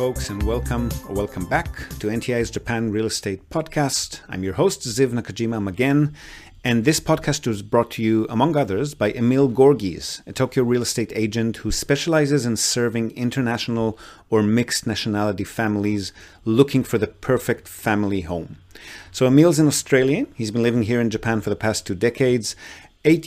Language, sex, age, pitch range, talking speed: English, male, 40-59, 105-130 Hz, 170 wpm